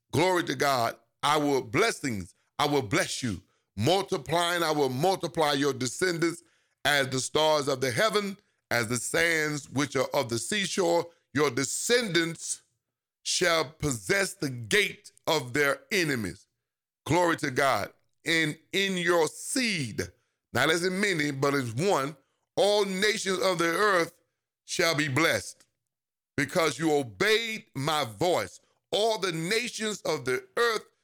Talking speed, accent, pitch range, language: 140 wpm, American, 130-180 Hz, English